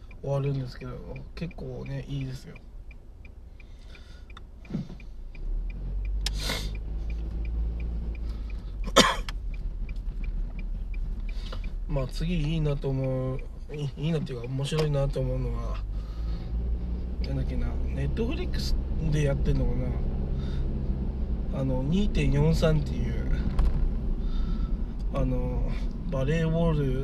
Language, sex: Japanese, male